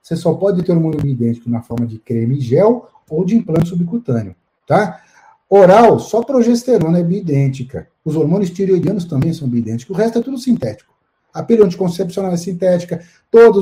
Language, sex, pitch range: Portuguese, male, 140-175 Hz